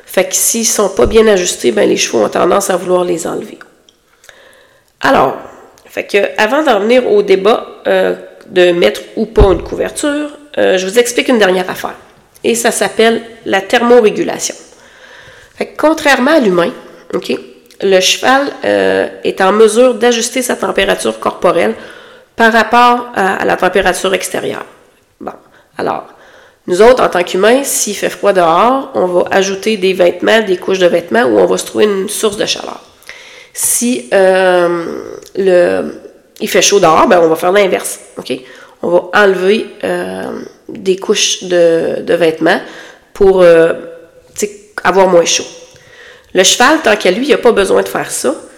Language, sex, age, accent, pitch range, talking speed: French, female, 30-49, Canadian, 185-260 Hz, 165 wpm